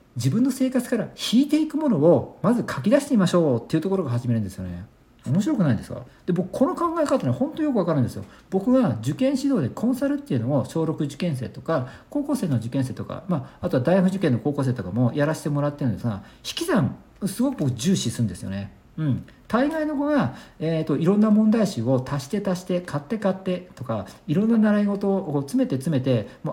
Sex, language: male, Japanese